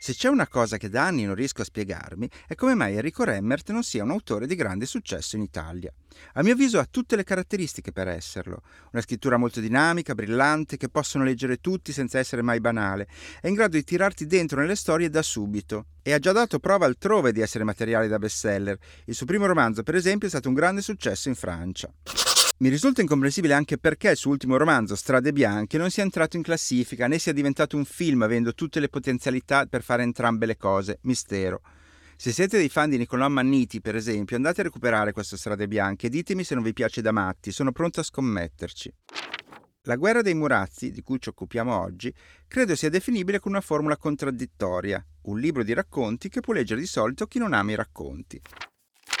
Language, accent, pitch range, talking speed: Italian, native, 110-165 Hz, 205 wpm